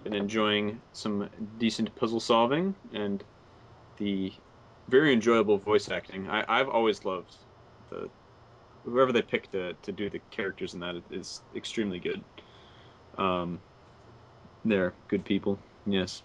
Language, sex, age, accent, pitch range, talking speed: English, male, 30-49, American, 100-125 Hz, 130 wpm